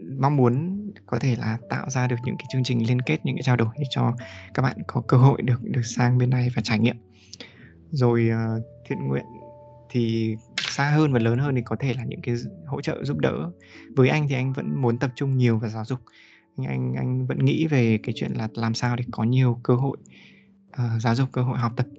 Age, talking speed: 20-39, 230 wpm